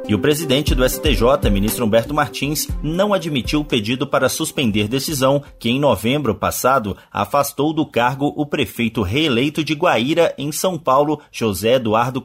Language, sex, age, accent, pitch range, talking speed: Portuguese, male, 30-49, Brazilian, 115-155 Hz, 155 wpm